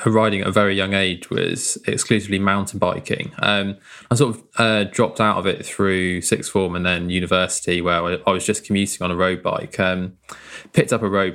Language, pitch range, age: English, 90-110 Hz, 20-39